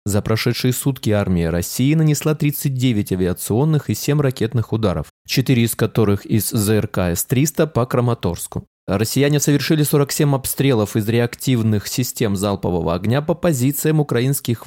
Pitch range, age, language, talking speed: 110-155 Hz, 20-39, Russian, 130 wpm